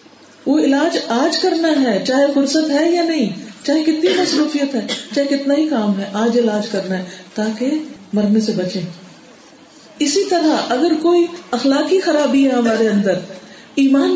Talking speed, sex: 155 wpm, female